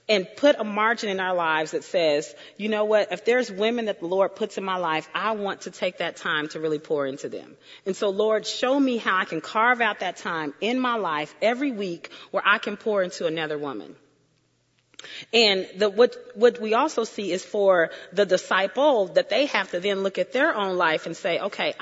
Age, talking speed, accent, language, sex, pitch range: 30-49, 220 wpm, American, English, female, 180-230 Hz